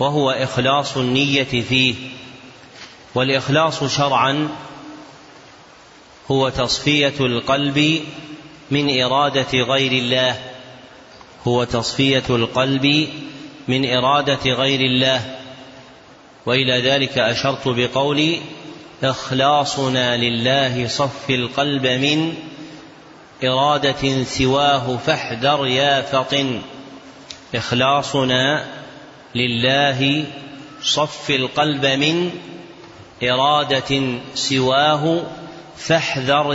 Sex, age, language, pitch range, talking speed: male, 30-49, Arabic, 130-150 Hz, 70 wpm